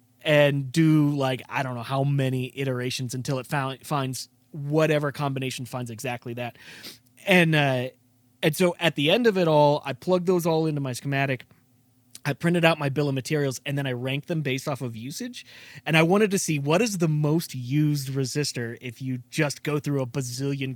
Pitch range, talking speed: 125-150 Hz, 200 wpm